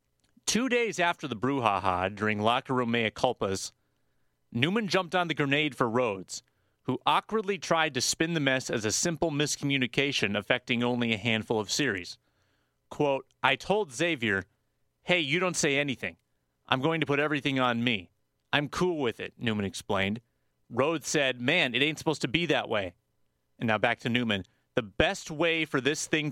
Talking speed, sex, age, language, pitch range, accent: 175 wpm, male, 30-49, English, 105-150 Hz, American